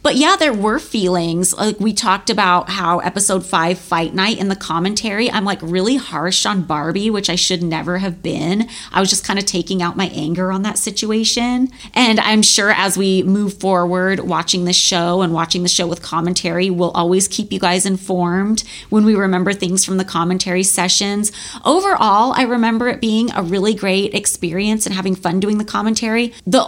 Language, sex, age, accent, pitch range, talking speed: English, female, 30-49, American, 180-220 Hz, 195 wpm